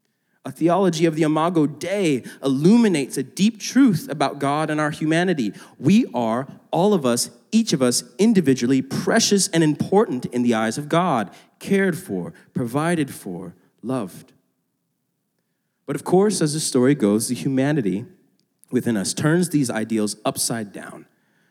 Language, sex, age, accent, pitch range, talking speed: English, male, 30-49, American, 120-185 Hz, 150 wpm